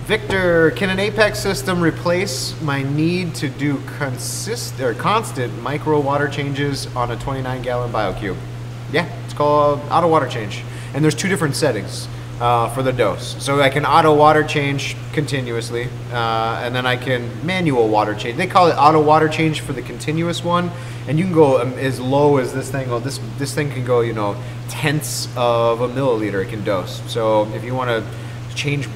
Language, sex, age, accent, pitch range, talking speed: English, male, 30-49, American, 120-145 Hz, 190 wpm